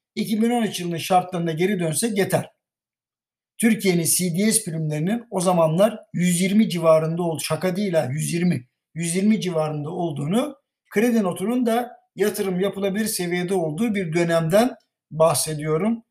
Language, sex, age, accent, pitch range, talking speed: Turkish, male, 60-79, native, 165-225 Hz, 115 wpm